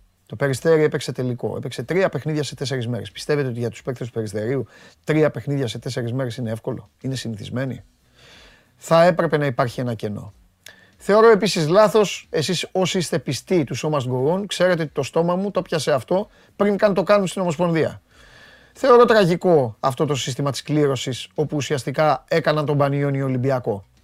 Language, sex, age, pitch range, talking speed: Greek, male, 30-49, 125-185 Hz, 175 wpm